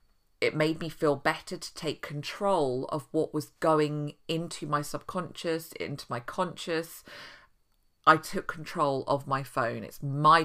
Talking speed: 150 wpm